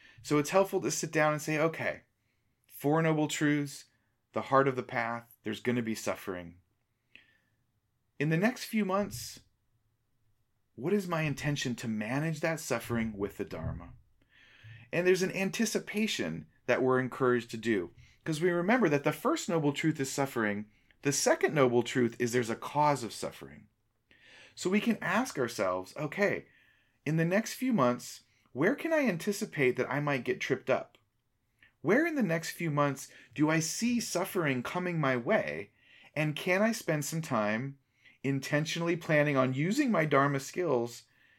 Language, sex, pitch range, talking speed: English, male, 120-160 Hz, 165 wpm